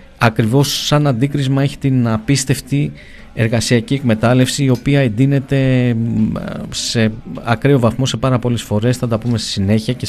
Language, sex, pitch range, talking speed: Greek, male, 105-130 Hz, 145 wpm